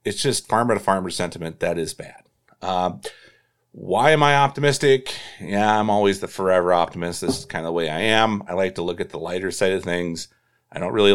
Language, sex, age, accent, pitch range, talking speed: English, male, 40-59, American, 90-125 Hz, 220 wpm